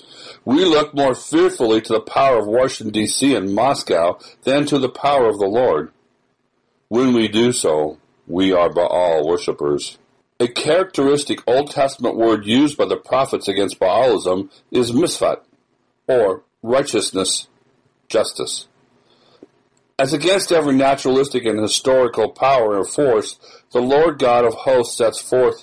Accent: American